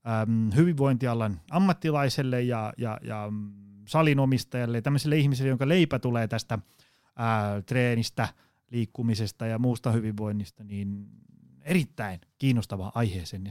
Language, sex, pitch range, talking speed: Finnish, male, 110-145 Hz, 100 wpm